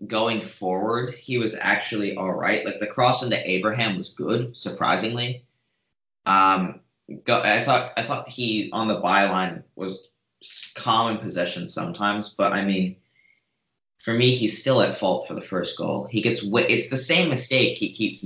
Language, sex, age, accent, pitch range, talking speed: English, male, 30-49, American, 95-120 Hz, 170 wpm